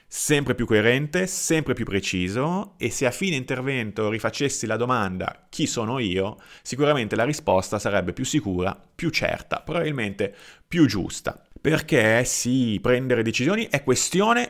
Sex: male